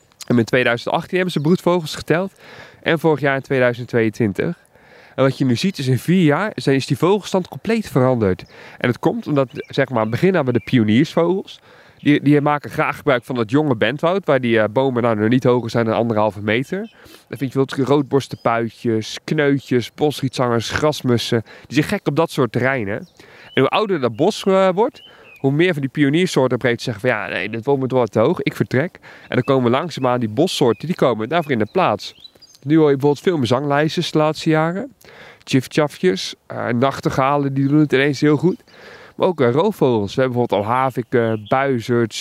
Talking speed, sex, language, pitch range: 195 wpm, male, Dutch, 120-150 Hz